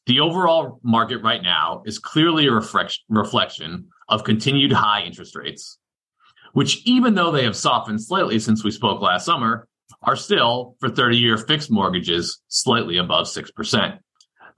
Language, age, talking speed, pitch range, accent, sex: English, 40-59, 145 wpm, 110-150 Hz, American, male